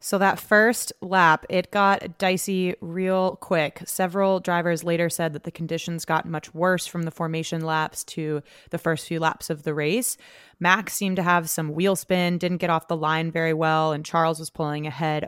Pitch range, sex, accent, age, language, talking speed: 150-175 Hz, female, American, 20-39, English, 195 wpm